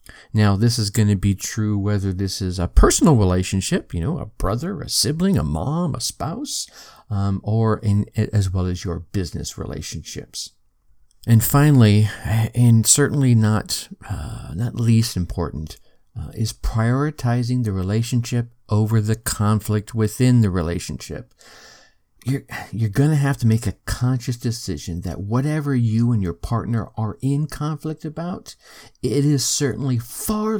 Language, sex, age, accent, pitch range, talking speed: English, male, 50-69, American, 105-135 Hz, 145 wpm